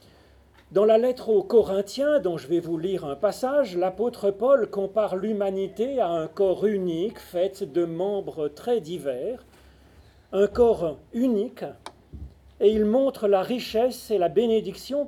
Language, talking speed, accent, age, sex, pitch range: French, 145 wpm, French, 40-59, male, 165-220 Hz